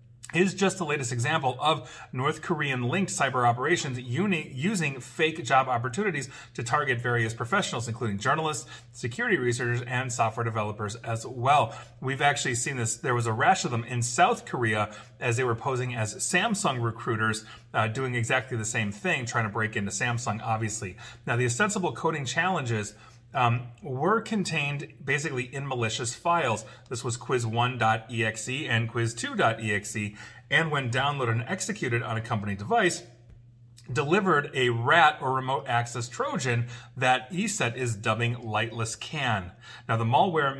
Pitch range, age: 115-145 Hz, 30-49